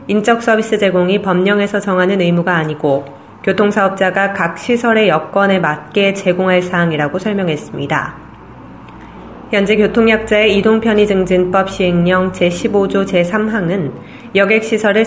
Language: Korean